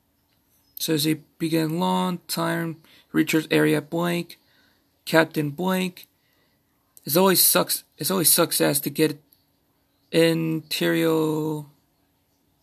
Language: English